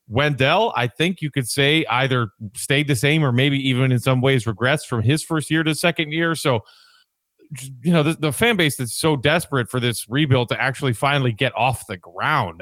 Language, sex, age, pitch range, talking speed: English, male, 30-49, 120-150 Hz, 210 wpm